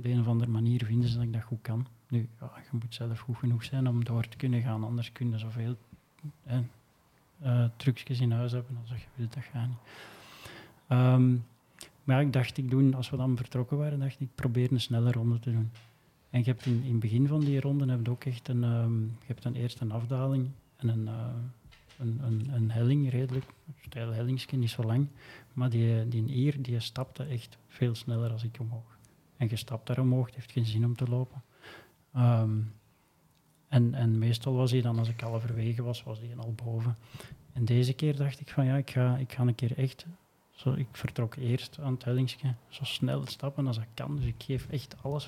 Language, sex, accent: Dutch, male, Dutch